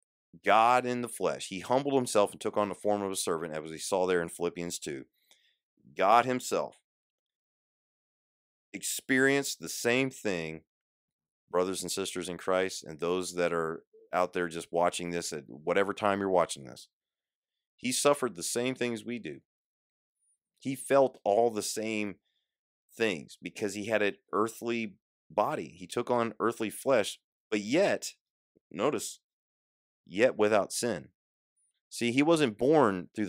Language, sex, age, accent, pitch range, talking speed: English, male, 30-49, American, 90-125 Hz, 150 wpm